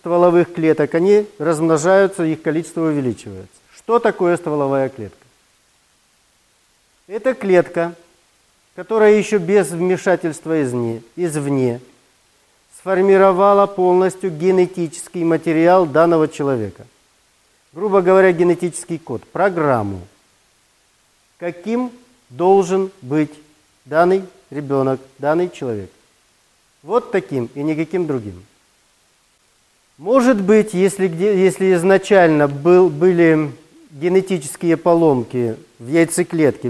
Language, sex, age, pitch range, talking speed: Russian, male, 40-59, 145-190 Hz, 85 wpm